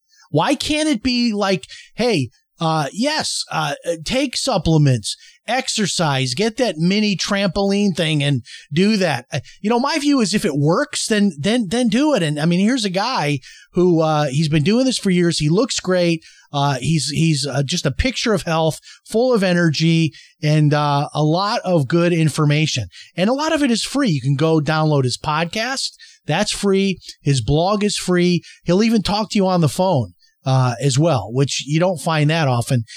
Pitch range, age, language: 145-195 Hz, 30-49, English